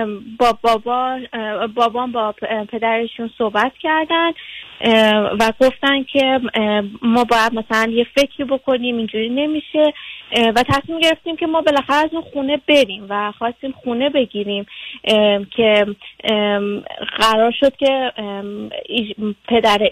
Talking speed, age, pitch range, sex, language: 110 wpm, 20-39, 215-275 Hz, female, Persian